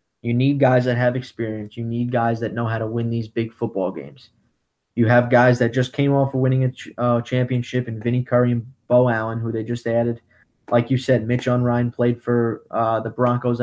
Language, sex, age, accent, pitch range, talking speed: English, male, 20-39, American, 115-130 Hz, 215 wpm